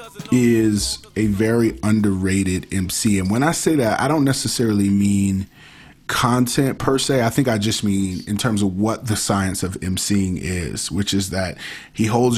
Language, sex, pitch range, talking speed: English, male, 100-120 Hz, 175 wpm